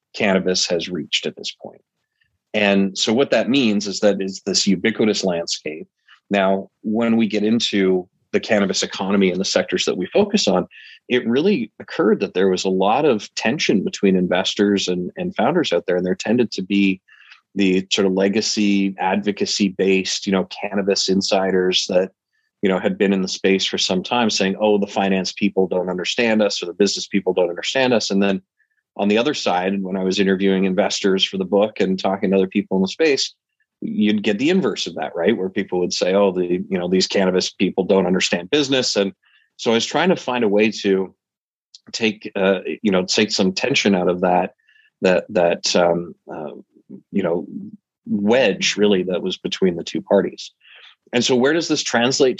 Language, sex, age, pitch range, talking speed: English, male, 30-49, 95-110 Hz, 195 wpm